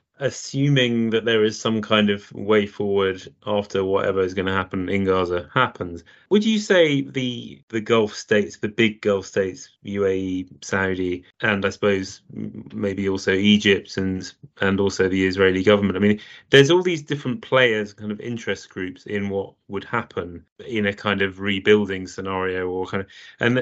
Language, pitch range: English, 95-115 Hz